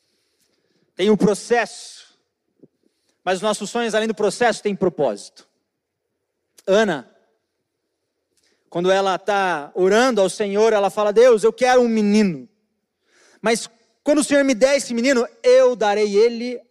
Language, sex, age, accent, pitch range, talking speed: Portuguese, male, 40-59, Brazilian, 210-285 Hz, 135 wpm